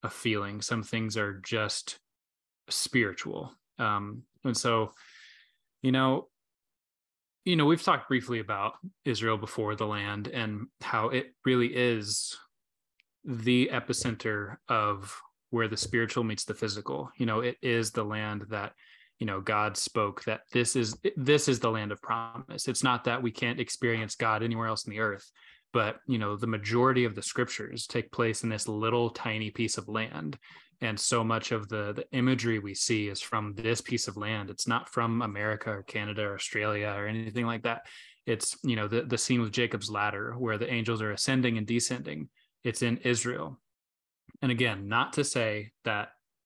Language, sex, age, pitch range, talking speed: English, male, 20-39, 105-120 Hz, 175 wpm